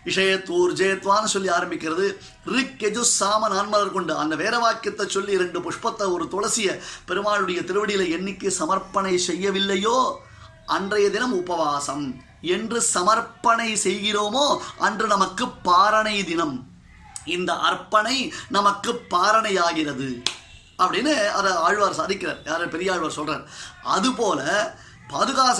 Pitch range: 180-220 Hz